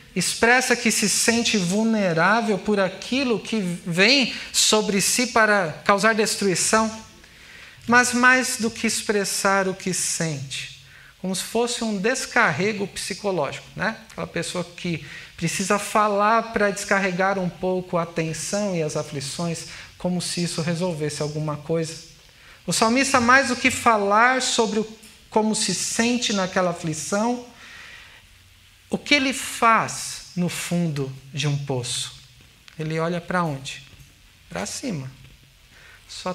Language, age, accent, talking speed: Portuguese, 50-69, Brazilian, 125 wpm